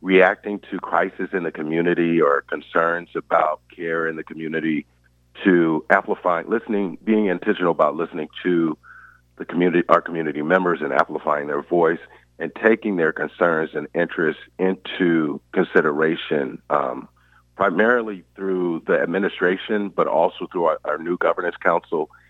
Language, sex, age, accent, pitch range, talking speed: English, male, 50-69, American, 75-95 Hz, 135 wpm